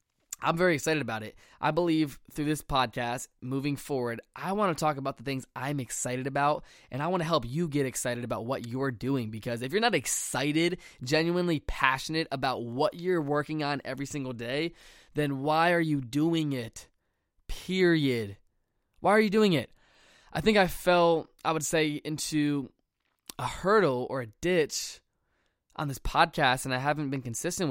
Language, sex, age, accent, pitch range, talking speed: English, male, 20-39, American, 125-160 Hz, 180 wpm